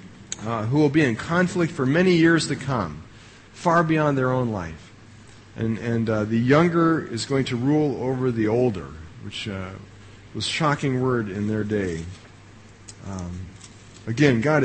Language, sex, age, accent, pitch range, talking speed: English, male, 40-59, American, 105-140 Hz, 160 wpm